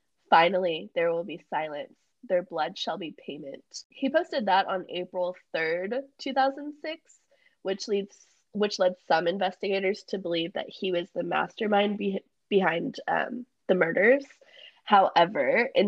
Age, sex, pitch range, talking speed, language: 20-39, female, 180-260 Hz, 135 wpm, English